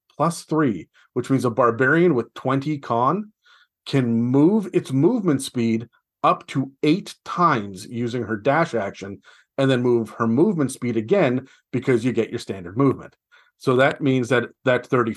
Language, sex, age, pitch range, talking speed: English, male, 40-59, 120-150 Hz, 160 wpm